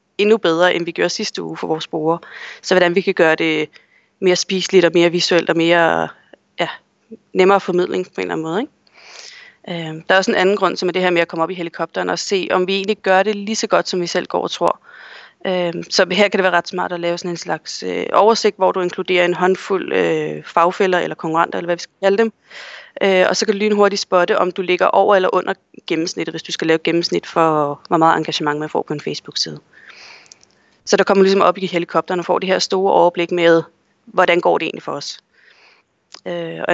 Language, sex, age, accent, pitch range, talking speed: Danish, female, 30-49, native, 170-200 Hz, 240 wpm